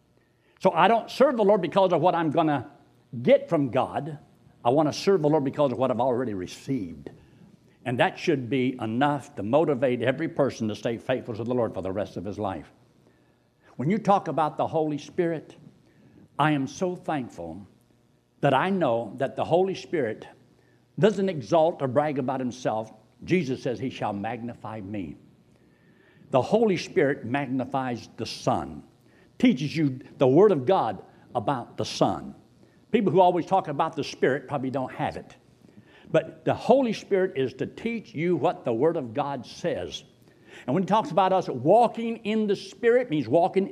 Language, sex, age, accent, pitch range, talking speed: English, male, 60-79, American, 130-190 Hz, 180 wpm